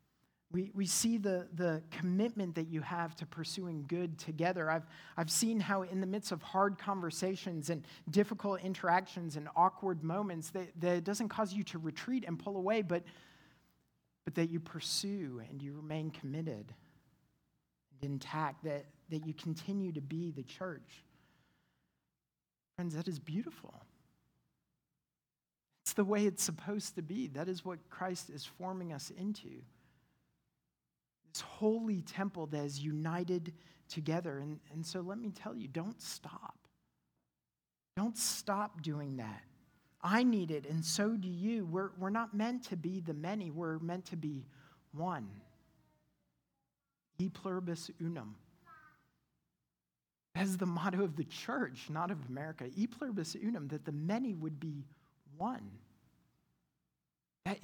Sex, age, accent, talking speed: male, 40-59, American, 145 wpm